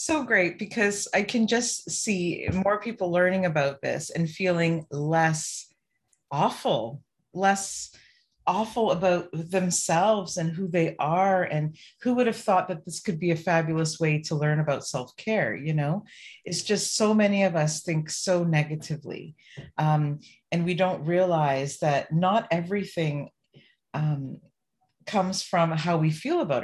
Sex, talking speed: female, 150 wpm